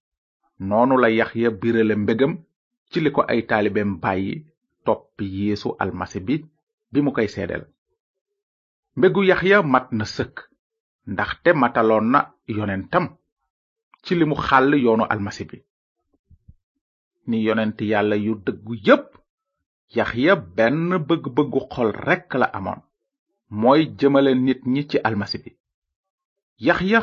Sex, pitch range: male, 115-180 Hz